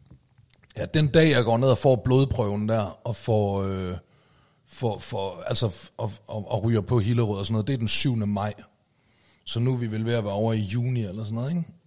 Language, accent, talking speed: Danish, native, 210 wpm